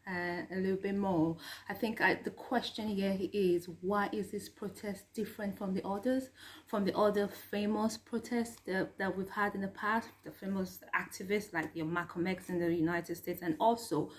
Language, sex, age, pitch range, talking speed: English, female, 20-39, 185-245 Hz, 180 wpm